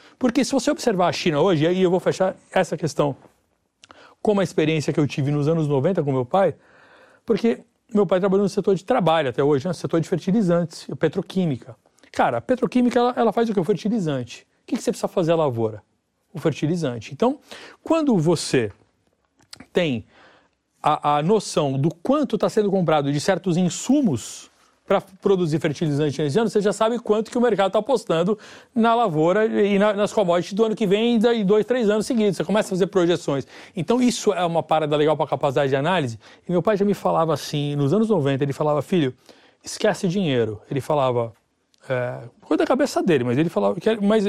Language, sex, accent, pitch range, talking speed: Portuguese, male, Brazilian, 150-215 Hz, 195 wpm